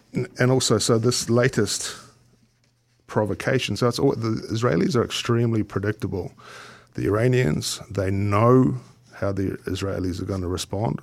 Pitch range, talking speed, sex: 95-115 Hz, 135 wpm, male